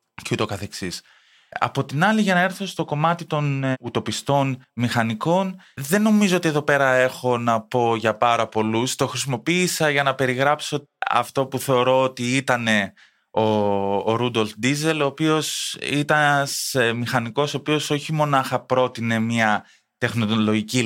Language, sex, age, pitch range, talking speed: Greek, male, 20-39, 110-145 Hz, 135 wpm